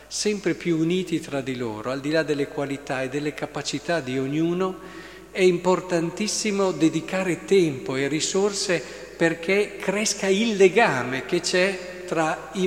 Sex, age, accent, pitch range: male, 50-69, native, 150-195 Hz